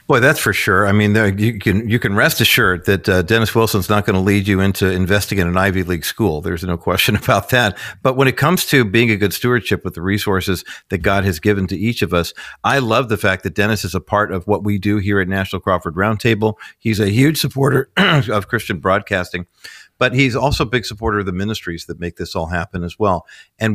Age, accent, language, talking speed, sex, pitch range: 50-69, American, English, 240 wpm, male, 95-110 Hz